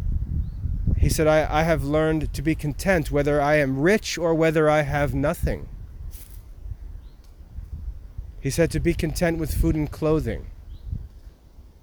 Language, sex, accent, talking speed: English, male, American, 135 wpm